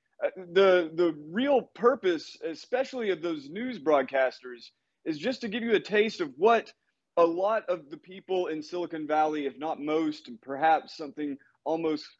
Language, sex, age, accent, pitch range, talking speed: English, male, 30-49, American, 155-235 Hz, 165 wpm